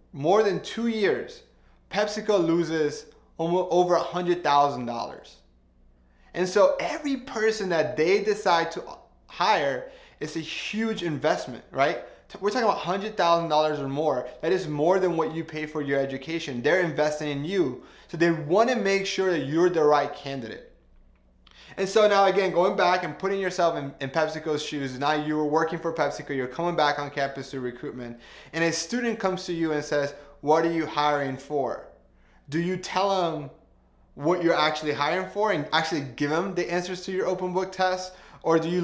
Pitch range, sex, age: 145-185 Hz, male, 20-39